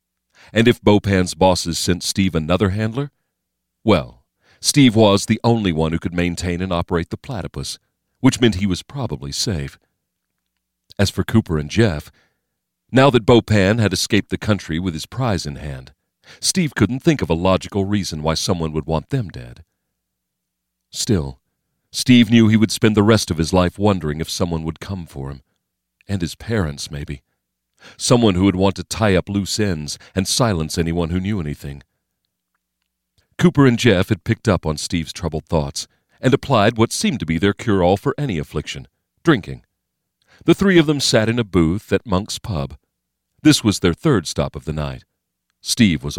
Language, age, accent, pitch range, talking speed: English, 40-59, American, 80-110 Hz, 180 wpm